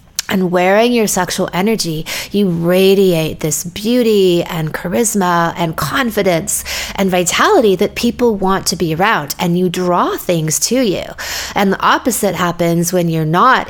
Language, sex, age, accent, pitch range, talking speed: English, female, 30-49, American, 165-200 Hz, 150 wpm